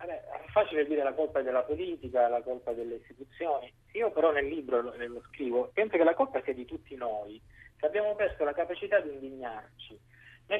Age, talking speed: 30-49, 200 wpm